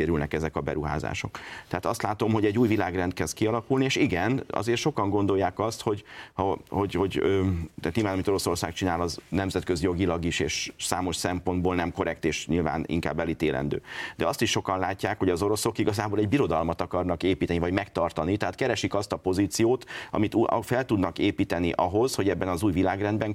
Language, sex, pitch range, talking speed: Hungarian, male, 85-110 Hz, 180 wpm